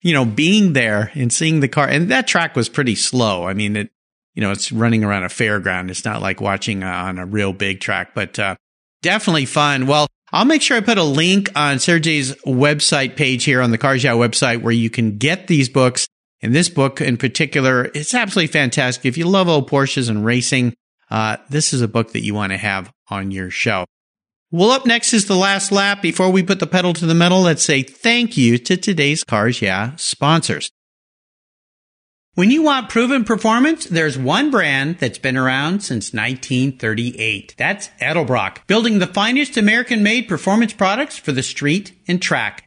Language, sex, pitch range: English, male, 125-200 Hz